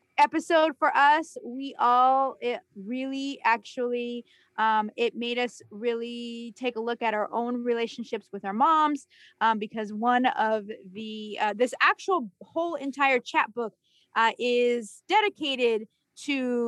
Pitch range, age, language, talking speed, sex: 215-270 Hz, 20-39, English, 140 wpm, female